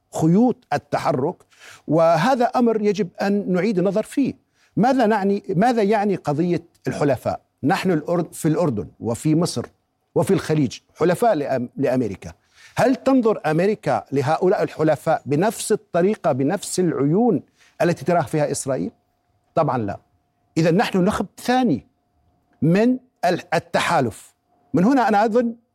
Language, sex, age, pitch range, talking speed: Arabic, male, 50-69, 155-220 Hz, 115 wpm